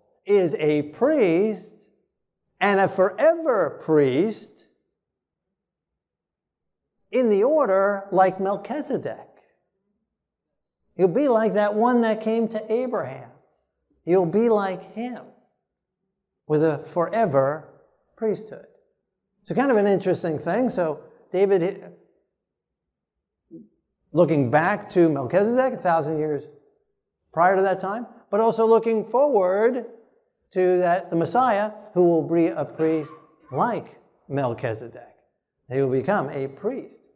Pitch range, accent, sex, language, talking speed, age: 160-225 Hz, American, male, English, 110 wpm, 50-69